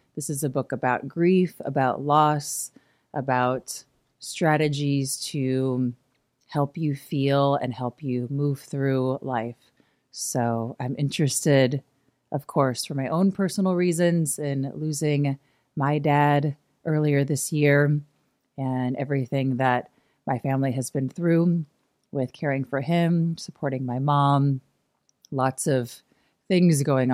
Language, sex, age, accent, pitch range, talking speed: English, female, 30-49, American, 125-145 Hz, 125 wpm